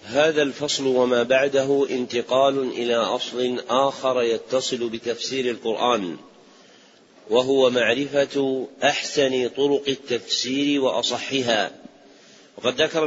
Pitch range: 130-150 Hz